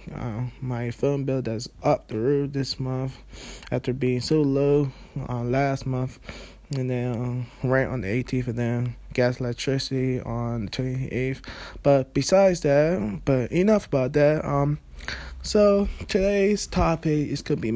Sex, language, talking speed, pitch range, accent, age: male, English, 150 wpm, 125-145 Hz, American, 20-39